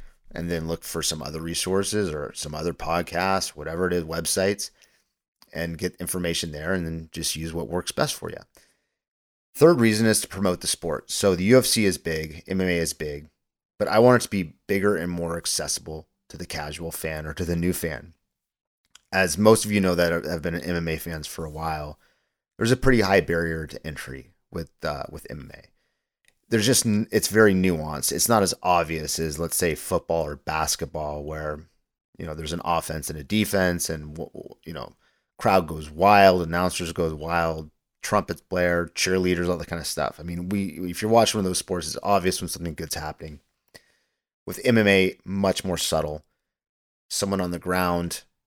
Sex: male